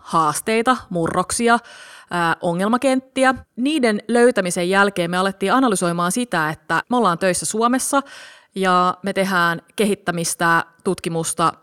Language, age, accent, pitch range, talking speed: Finnish, 30-49, native, 165-225 Hz, 105 wpm